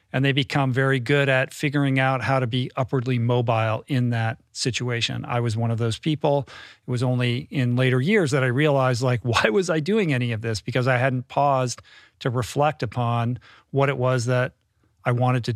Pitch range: 120-140 Hz